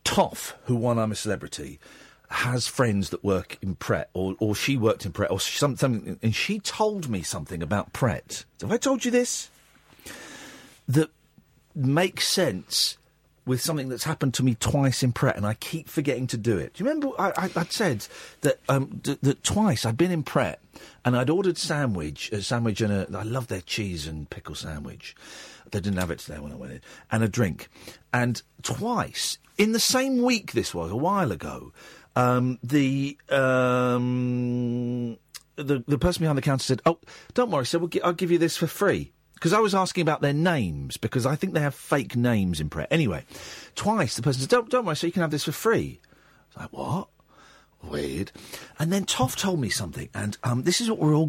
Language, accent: English, British